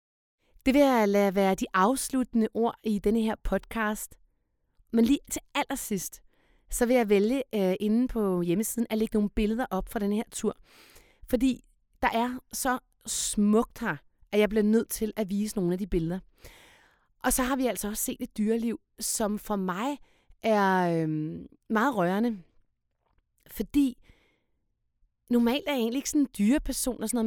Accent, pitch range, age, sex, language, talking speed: native, 215-265 Hz, 30-49, female, Danish, 165 wpm